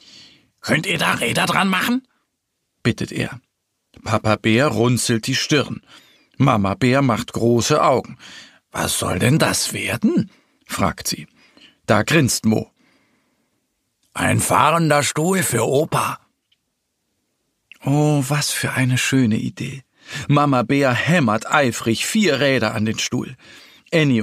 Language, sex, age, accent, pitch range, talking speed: German, male, 50-69, German, 120-180 Hz, 120 wpm